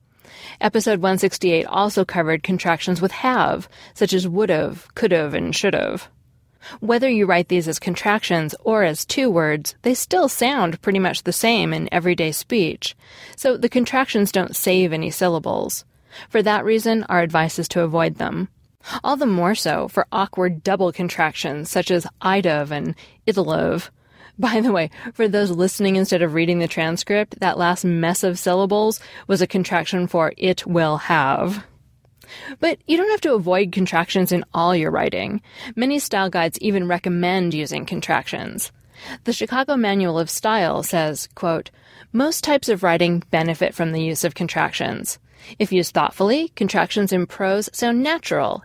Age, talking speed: 20-39, 160 wpm